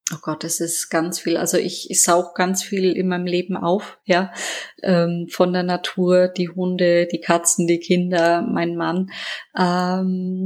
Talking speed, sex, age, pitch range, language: 170 wpm, female, 20-39, 175-190 Hz, German